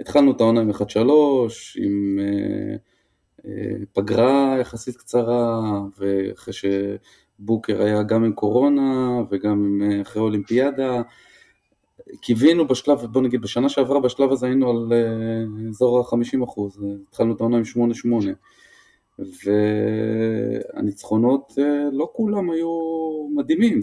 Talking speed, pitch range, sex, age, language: 120 wpm, 110-135 Hz, male, 20-39, Hebrew